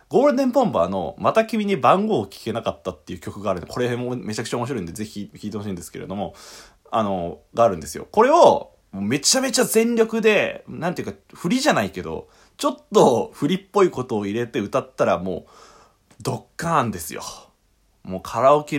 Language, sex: Japanese, male